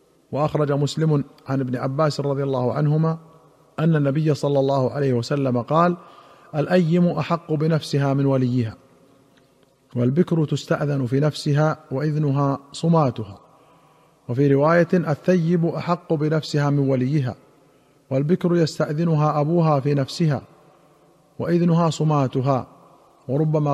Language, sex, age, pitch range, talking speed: Arabic, male, 50-69, 135-165 Hz, 105 wpm